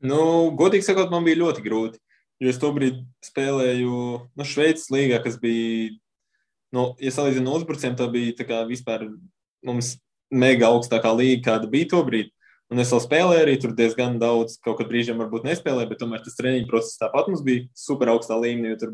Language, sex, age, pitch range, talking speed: English, male, 20-39, 115-140 Hz, 185 wpm